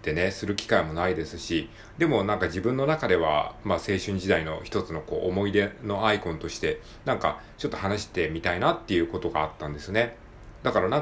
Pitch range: 90-145 Hz